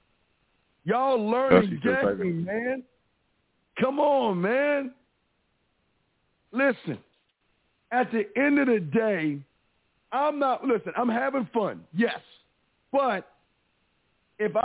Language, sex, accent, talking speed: English, male, American, 90 wpm